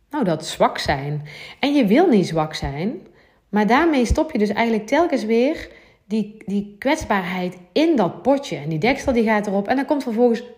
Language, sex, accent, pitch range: Dutch, female, Dutch, 170-240 Hz